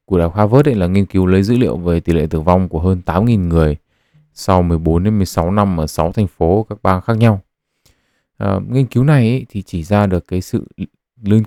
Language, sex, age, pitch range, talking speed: Vietnamese, male, 20-39, 85-110 Hz, 220 wpm